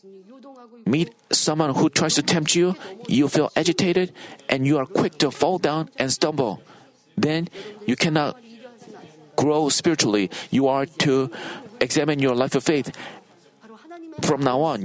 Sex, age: male, 40-59